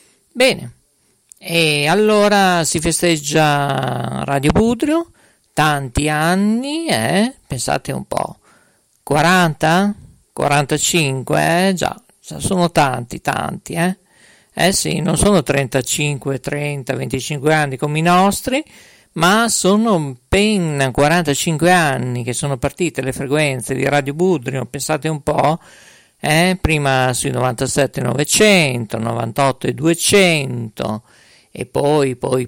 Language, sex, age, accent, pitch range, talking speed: Italian, male, 50-69, native, 135-180 Hz, 105 wpm